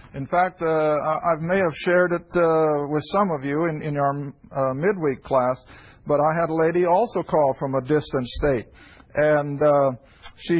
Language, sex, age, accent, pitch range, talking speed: English, male, 50-69, American, 145-180 Hz, 185 wpm